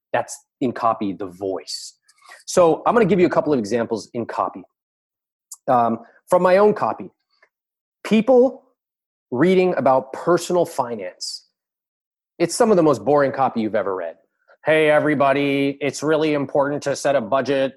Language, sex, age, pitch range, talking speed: English, male, 30-49, 130-175 Hz, 155 wpm